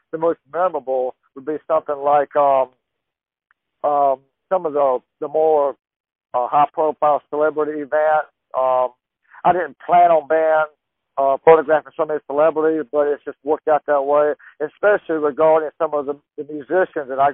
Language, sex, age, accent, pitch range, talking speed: English, male, 50-69, American, 140-160 Hz, 160 wpm